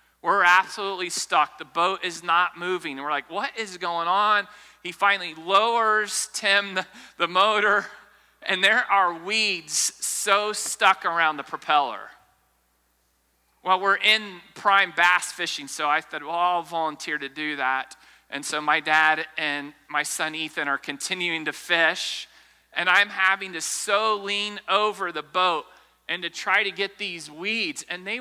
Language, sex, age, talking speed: English, male, 40-59, 160 wpm